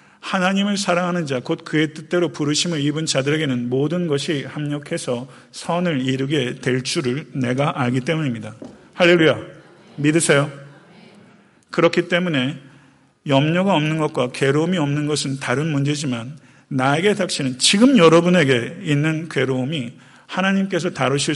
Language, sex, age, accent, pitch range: Korean, male, 40-59, native, 130-165 Hz